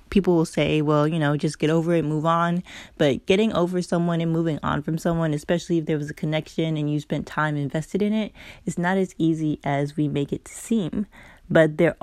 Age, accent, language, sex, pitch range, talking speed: 20-39, American, English, female, 145-170 Hz, 230 wpm